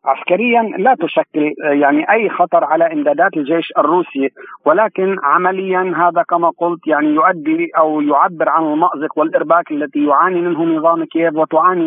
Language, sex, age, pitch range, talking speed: Arabic, male, 50-69, 150-175 Hz, 140 wpm